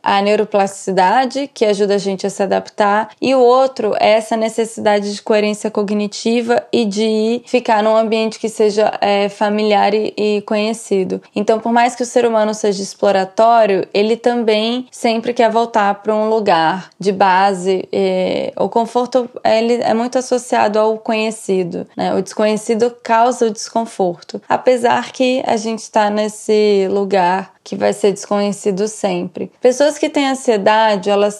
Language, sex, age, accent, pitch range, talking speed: Portuguese, female, 10-29, Brazilian, 200-235 Hz, 150 wpm